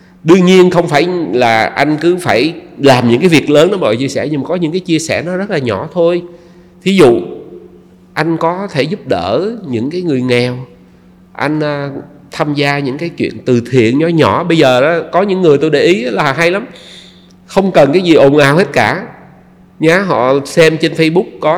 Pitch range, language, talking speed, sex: 115-175 Hz, Vietnamese, 215 wpm, male